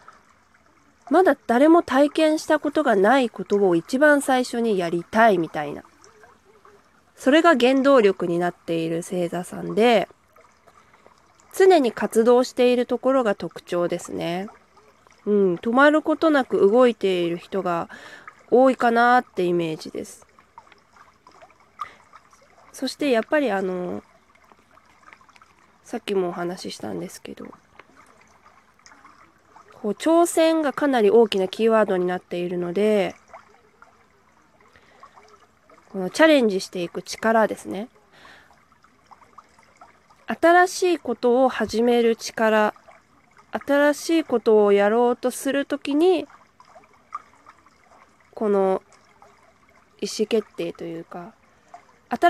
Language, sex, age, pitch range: Japanese, female, 20-39, 190-290 Hz